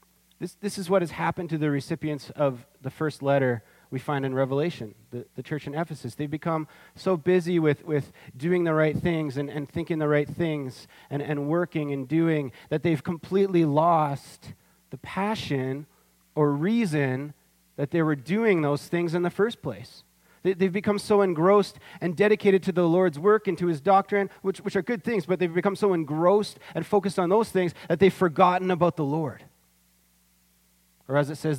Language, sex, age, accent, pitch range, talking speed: English, male, 30-49, American, 130-175 Hz, 190 wpm